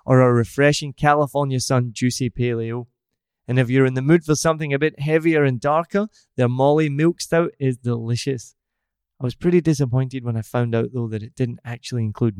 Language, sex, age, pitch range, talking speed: English, male, 20-39, 120-160 Hz, 195 wpm